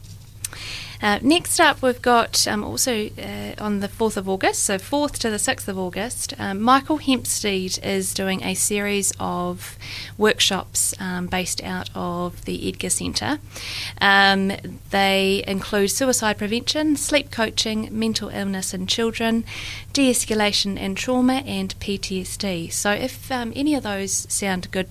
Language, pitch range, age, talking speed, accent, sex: English, 180-230 Hz, 30-49, 145 wpm, Australian, female